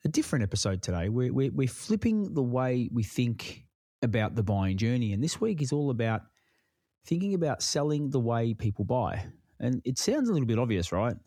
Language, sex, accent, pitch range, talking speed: English, male, Australian, 110-140 Hz, 190 wpm